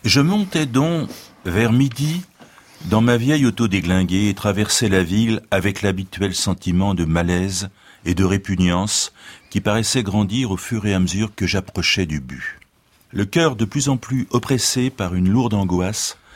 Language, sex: French, male